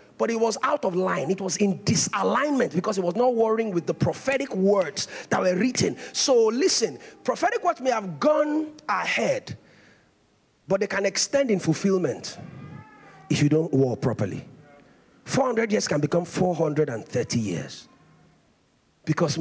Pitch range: 155-235 Hz